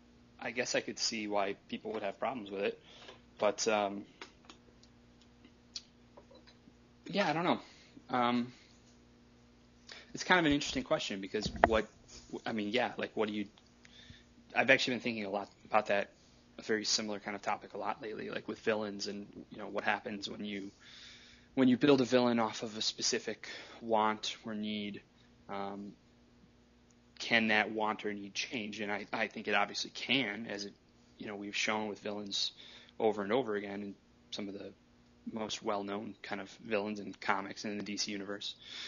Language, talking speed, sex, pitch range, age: English, 180 wpm, male, 90-110 Hz, 20-39